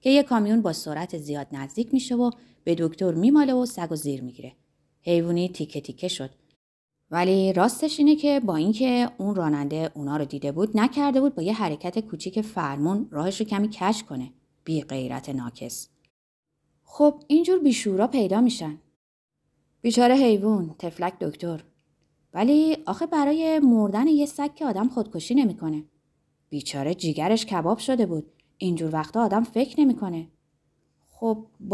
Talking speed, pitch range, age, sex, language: 145 wpm, 160-250 Hz, 30-49, female, Persian